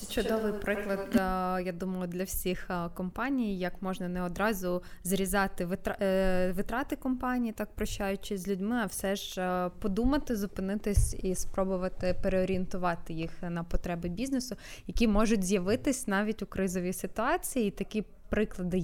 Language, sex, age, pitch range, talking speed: Ukrainian, female, 20-39, 185-230 Hz, 125 wpm